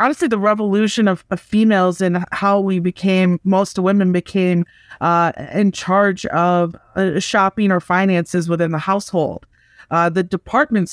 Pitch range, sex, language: 175-205 Hz, female, English